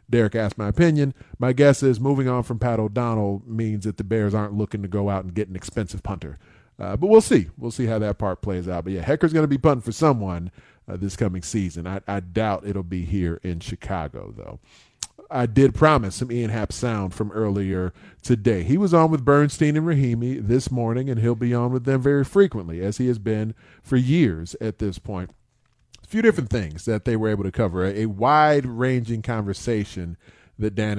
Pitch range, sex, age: 100-130 Hz, male, 40-59